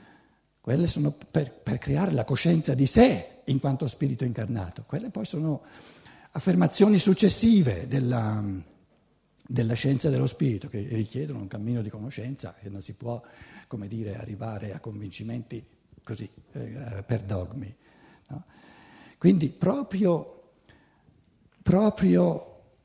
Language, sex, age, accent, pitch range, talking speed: Italian, male, 60-79, native, 115-175 Hz, 120 wpm